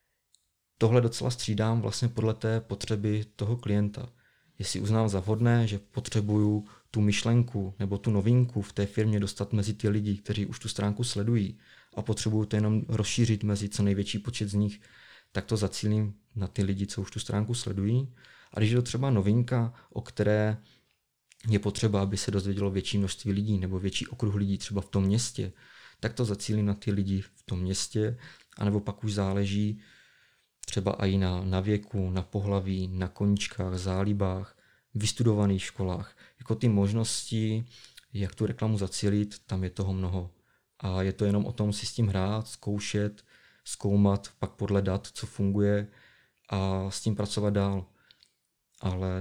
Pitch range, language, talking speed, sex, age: 100-110 Hz, Czech, 165 wpm, male, 30-49